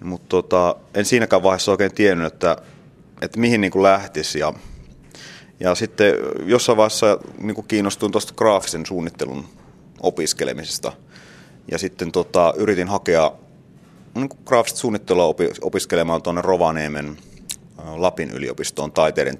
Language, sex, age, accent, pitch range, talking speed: Finnish, male, 30-49, native, 85-105 Hz, 120 wpm